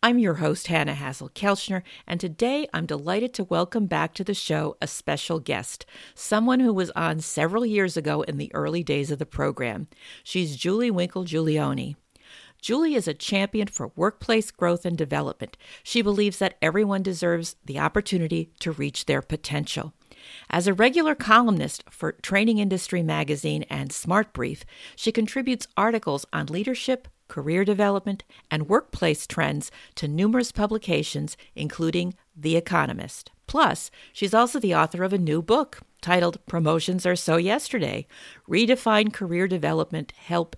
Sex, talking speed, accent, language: female, 150 wpm, American, English